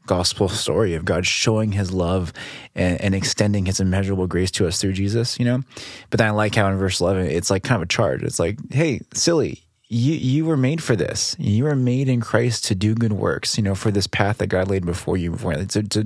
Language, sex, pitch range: English, male, 95-120 Hz